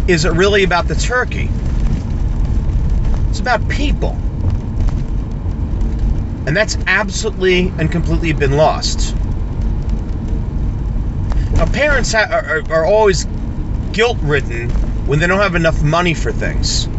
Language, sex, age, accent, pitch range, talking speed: English, male, 40-59, American, 110-165 Hz, 115 wpm